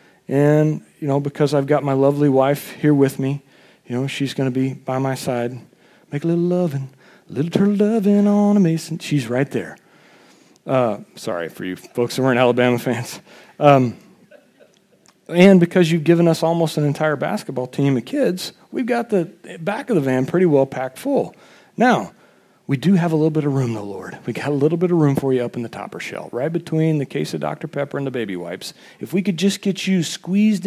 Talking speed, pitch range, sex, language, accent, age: 215 wpm, 135-185 Hz, male, English, American, 40-59